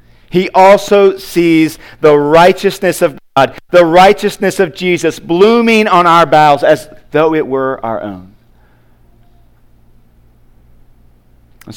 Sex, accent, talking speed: male, American, 110 wpm